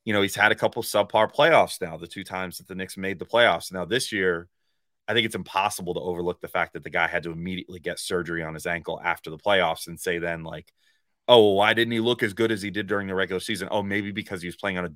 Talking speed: 285 wpm